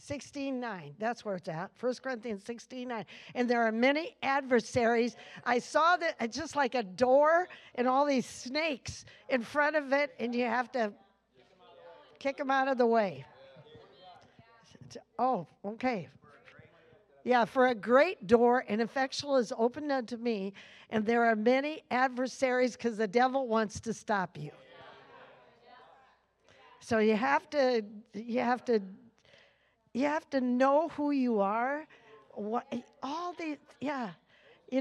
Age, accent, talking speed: 50-69, American, 145 wpm